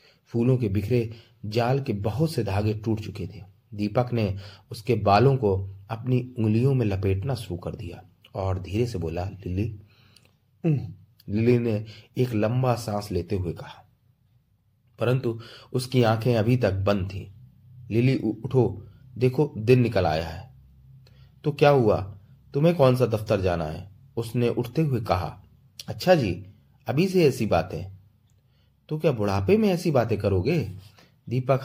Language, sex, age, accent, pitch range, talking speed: Hindi, male, 30-49, native, 105-130 Hz, 145 wpm